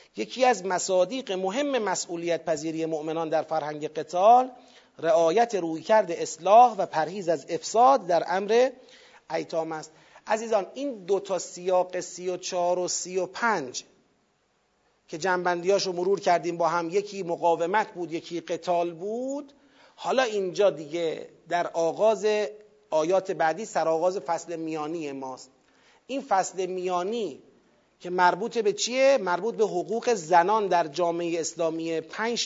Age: 40-59